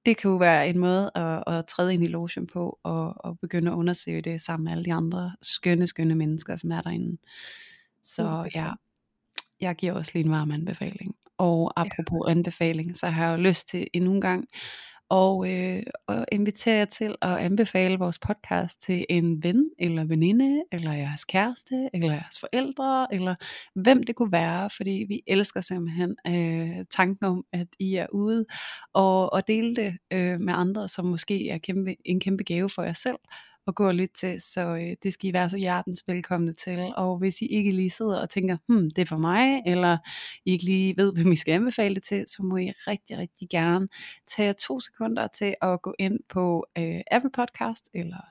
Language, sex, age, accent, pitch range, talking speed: Danish, female, 30-49, native, 175-200 Hz, 200 wpm